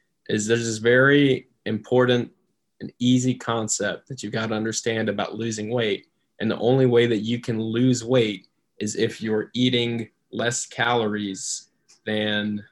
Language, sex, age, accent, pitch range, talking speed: English, male, 20-39, American, 105-120 Hz, 150 wpm